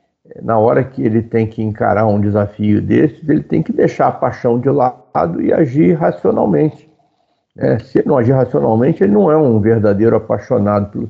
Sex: male